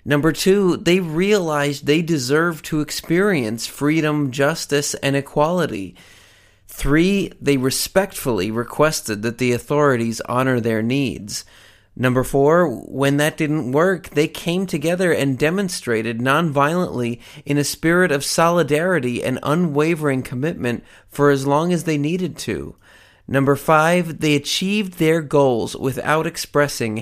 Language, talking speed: English, 125 wpm